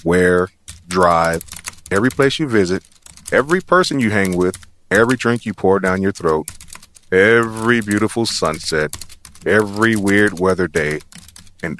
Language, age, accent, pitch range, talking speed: English, 30-49, American, 90-115 Hz, 130 wpm